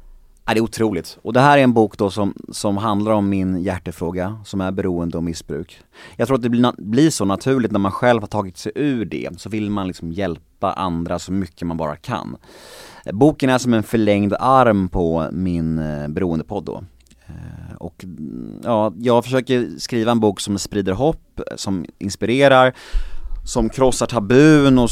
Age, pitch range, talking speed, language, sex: 30-49, 90-120 Hz, 175 wpm, English, male